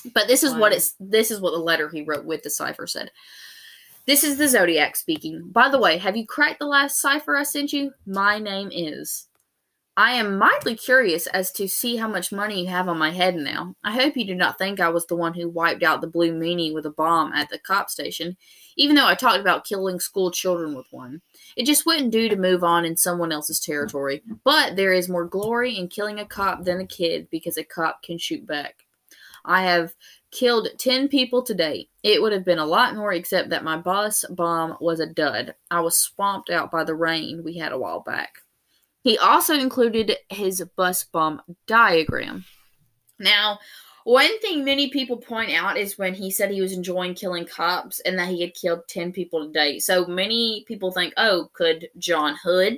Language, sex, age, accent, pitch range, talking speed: English, female, 20-39, American, 170-230 Hz, 215 wpm